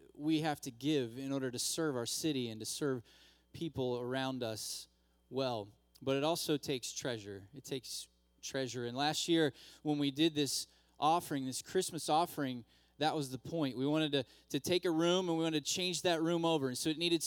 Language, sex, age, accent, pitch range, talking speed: English, male, 20-39, American, 120-165 Hz, 205 wpm